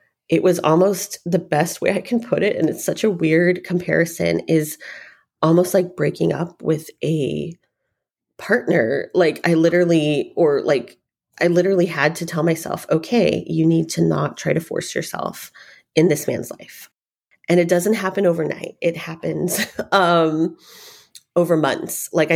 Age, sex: 30-49, female